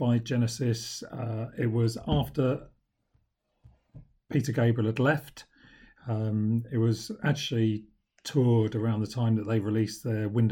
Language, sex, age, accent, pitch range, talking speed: English, male, 40-59, British, 110-130 Hz, 130 wpm